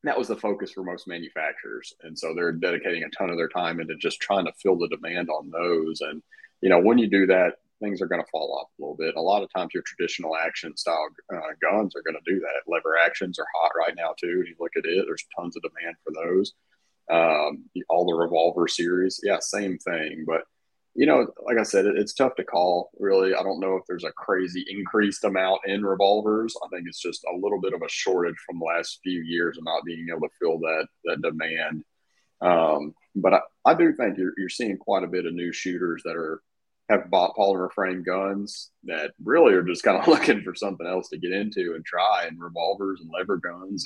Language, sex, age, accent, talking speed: English, male, 30-49, American, 235 wpm